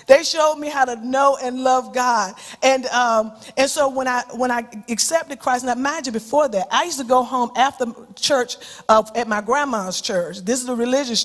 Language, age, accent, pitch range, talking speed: English, 40-59, American, 225-270 Hz, 215 wpm